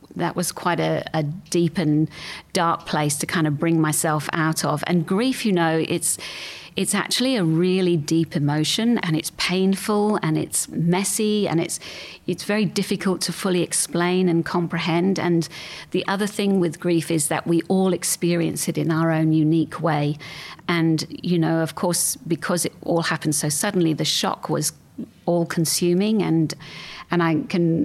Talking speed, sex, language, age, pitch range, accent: 170 wpm, female, English, 50-69, 160-190 Hz, British